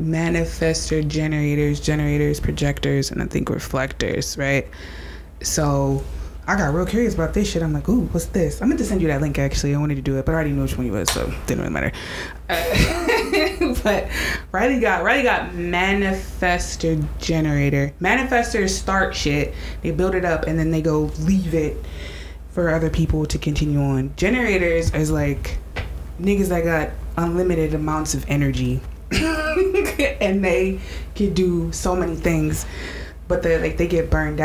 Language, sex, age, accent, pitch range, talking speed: English, female, 20-39, American, 140-170 Hz, 170 wpm